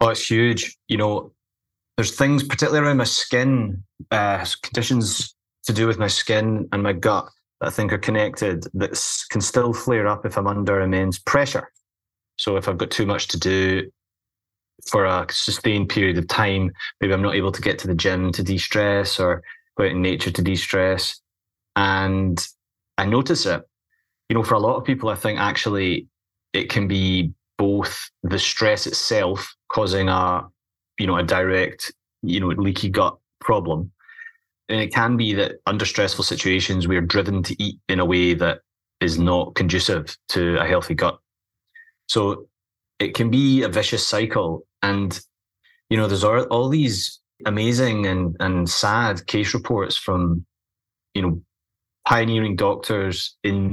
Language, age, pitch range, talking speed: English, 20-39, 95-110 Hz, 170 wpm